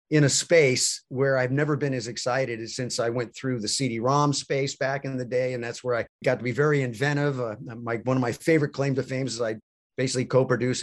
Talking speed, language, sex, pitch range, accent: 240 wpm, English, male, 120-150 Hz, American